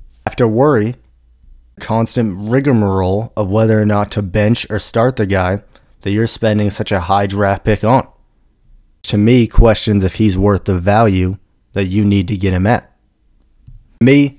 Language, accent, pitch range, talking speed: English, American, 95-115 Hz, 165 wpm